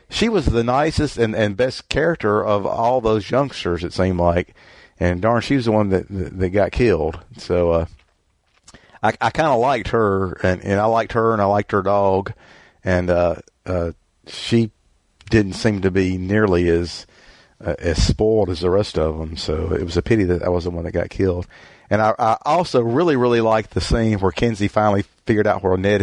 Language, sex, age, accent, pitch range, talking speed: English, male, 50-69, American, 85-105 Hz, 210 wpm